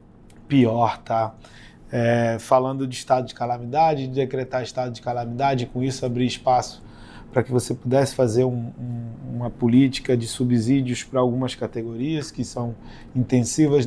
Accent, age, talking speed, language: Brazilian, 20-39, 135 wpm, Portuguese